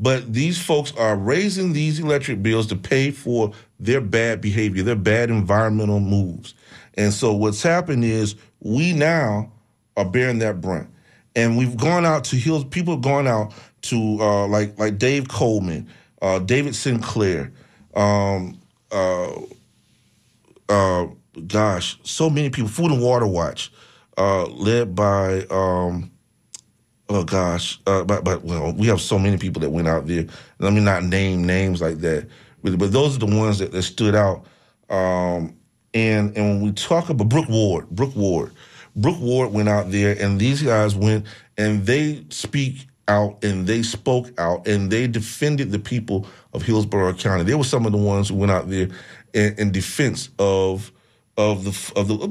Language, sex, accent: English, male, American